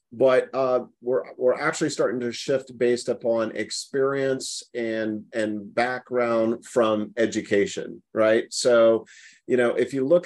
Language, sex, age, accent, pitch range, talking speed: English, male, 40-59, American, 115-135 Hz, 135 wpm